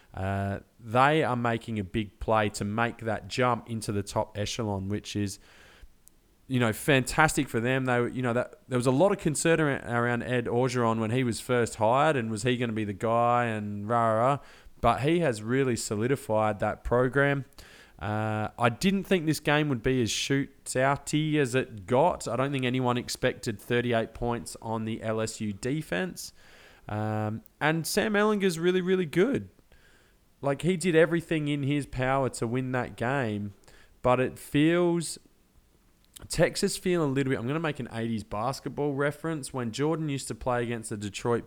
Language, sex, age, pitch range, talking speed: English, male, 20-39, 115-140 Hz, 180 wpm